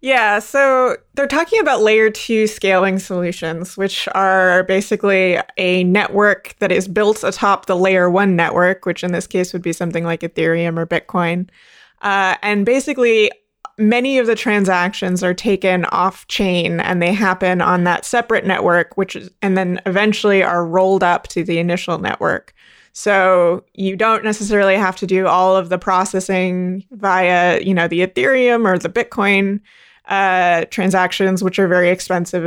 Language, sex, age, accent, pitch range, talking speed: English, female, 20-39, American, 180-210 Hz, 165 wpm